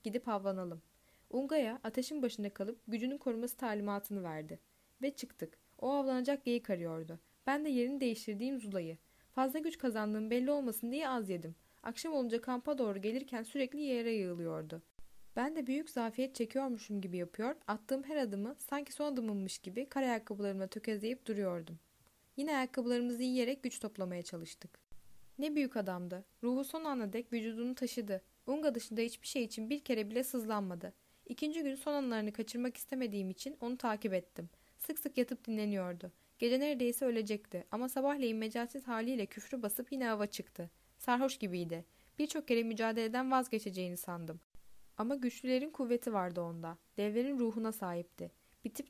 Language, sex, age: Turkish, female, 10-29